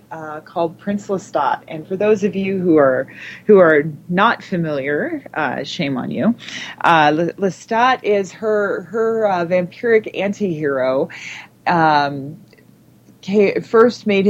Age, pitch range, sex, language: 30-49, 155-205 Hz, female, English